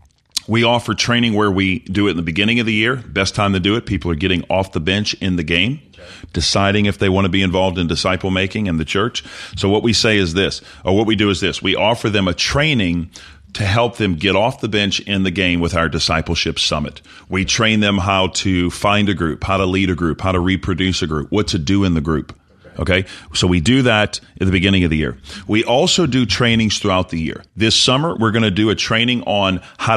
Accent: American